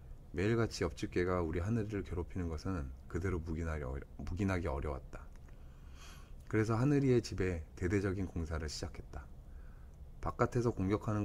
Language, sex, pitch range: Korean, male, 70-105 Hz